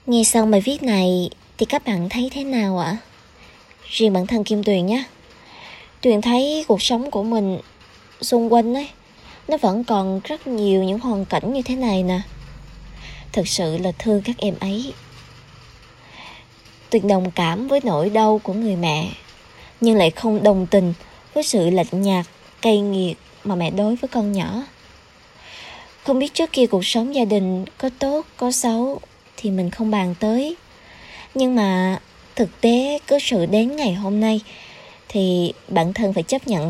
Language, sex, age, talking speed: Vietnamese, male, 20-39, 170 wpm